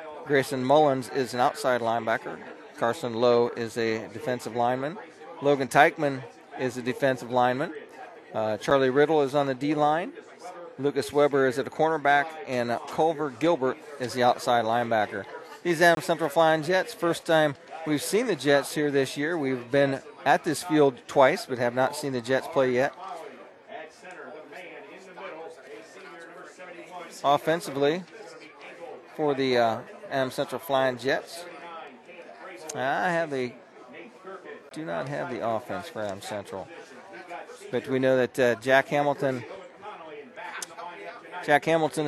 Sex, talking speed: male, 135 wpm